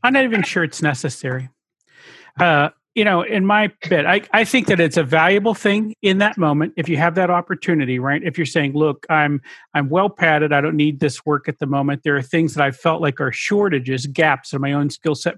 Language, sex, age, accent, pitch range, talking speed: English, male, 40-59, American, 145-185 Hz, 235 wpm